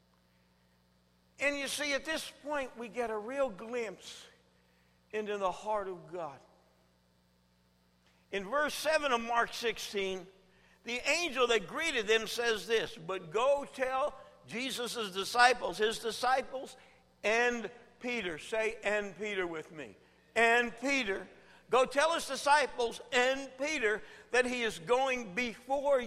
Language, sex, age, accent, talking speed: English, male, 60-79, American, 130 wpm